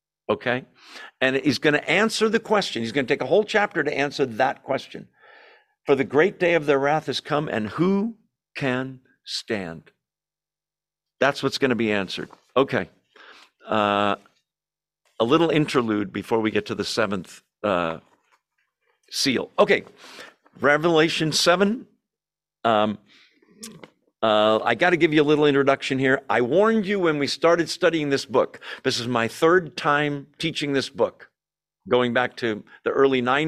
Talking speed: 155 wpm